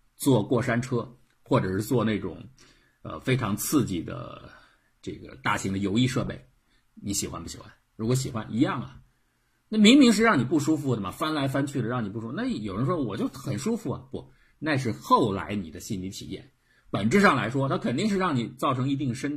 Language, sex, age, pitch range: Chinese, male, 50-69, 105-140 Hz